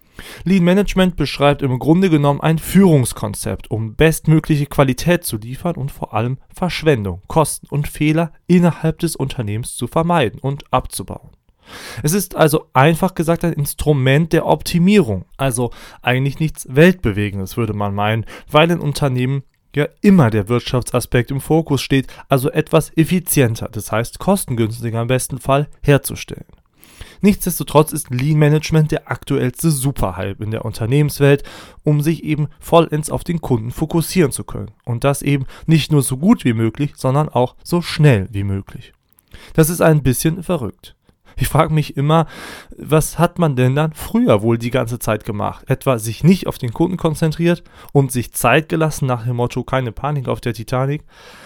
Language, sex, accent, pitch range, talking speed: German, male, German, 125-160 Hz, 160 wpm